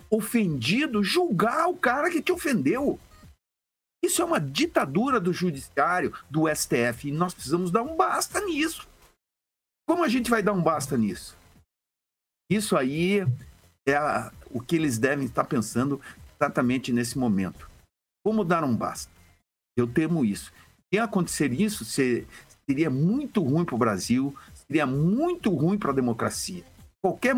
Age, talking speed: 50-69, 145 wpm